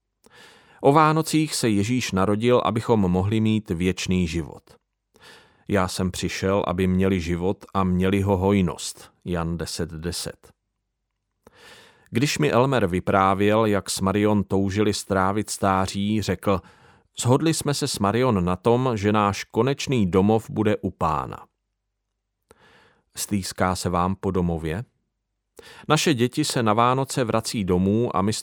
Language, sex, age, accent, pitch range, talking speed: Czech, male, 40-59, native, 95-120 Hz, 130 wpm